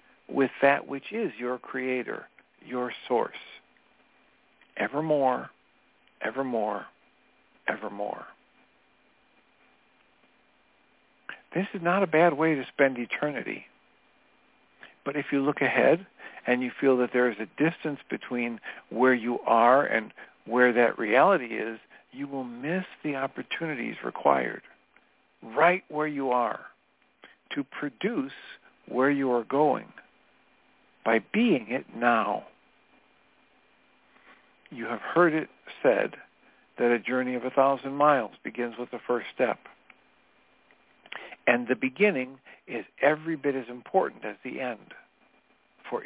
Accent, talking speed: American, 120 wpm